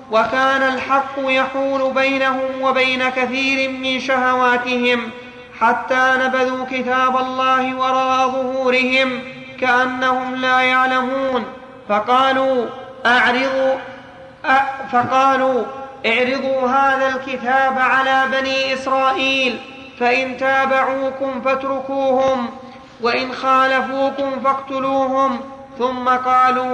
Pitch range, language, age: 255-265 Hz, Arabic, 30-49